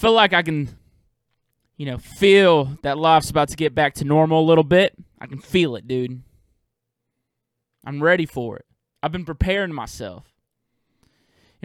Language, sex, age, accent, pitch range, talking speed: English, male, 20-39, American, 140-190 Hz, 165 wpm